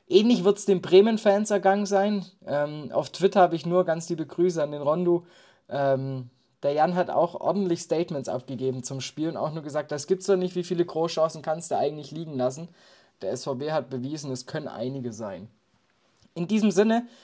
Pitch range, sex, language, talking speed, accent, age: 145-195 Hz, male, German, 200 wpm, German, 20-39